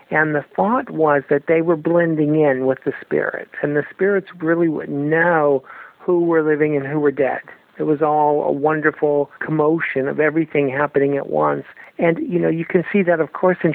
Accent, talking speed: American, 200 wpm